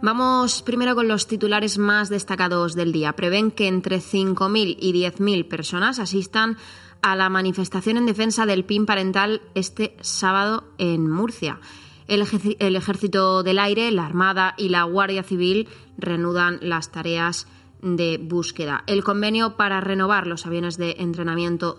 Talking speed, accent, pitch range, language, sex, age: 150 wpm, Spanish, 175-205 Hz, Spanish, female, 20-39